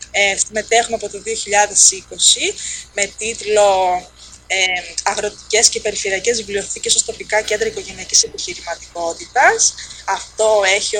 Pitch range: 200-270 Hz